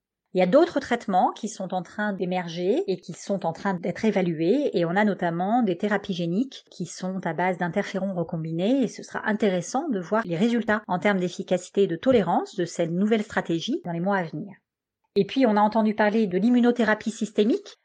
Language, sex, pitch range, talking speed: French, female, 185-225 Hz, 210 wpm